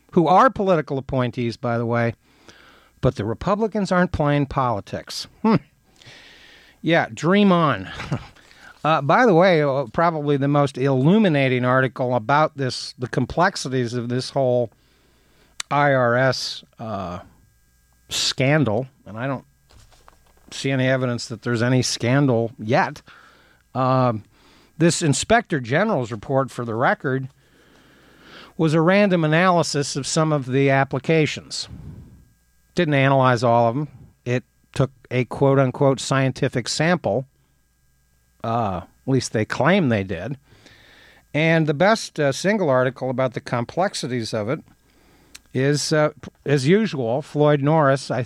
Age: 50-69